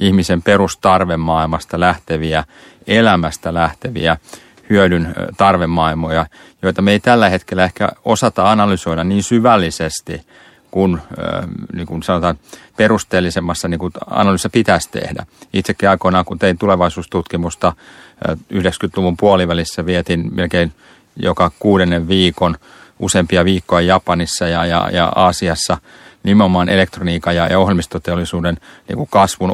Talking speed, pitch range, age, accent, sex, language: 100 wpm, 85-100 Hz, 30-49, native, male, Finnish